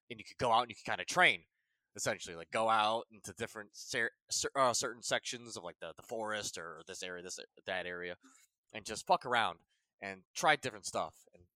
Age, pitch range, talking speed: 20-39, 90-120 Hz, 220 wpm